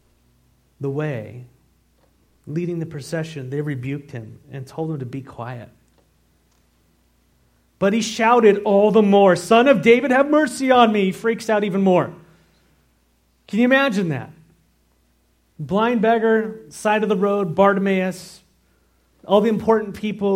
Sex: male